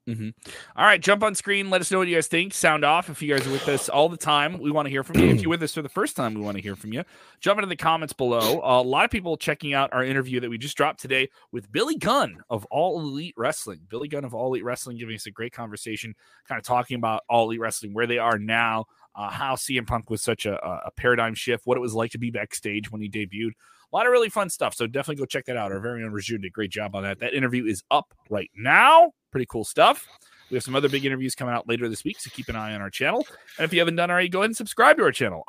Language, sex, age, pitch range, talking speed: English, male, 30-49, 115-165 Hz, 295 wpm